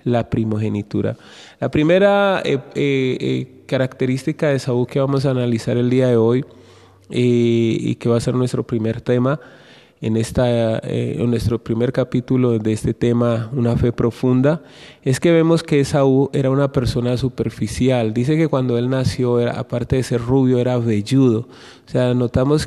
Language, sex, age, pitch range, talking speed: Spanish, male, 20-39, 120-135 Hz, 170 wpm